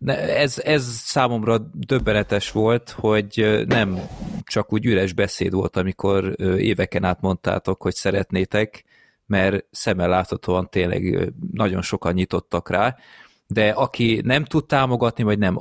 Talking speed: 125 wpm